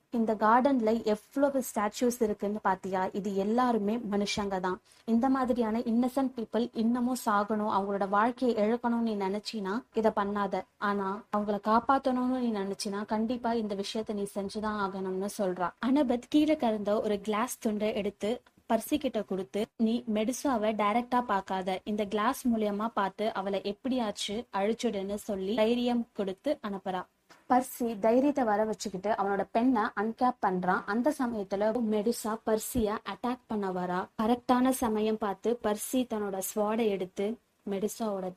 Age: 20-39